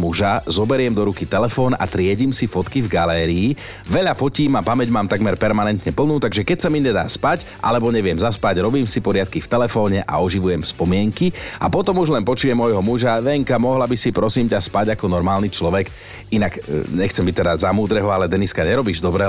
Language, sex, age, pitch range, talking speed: Slovak, male, 40-59, 95-135 Hz, 195 wpm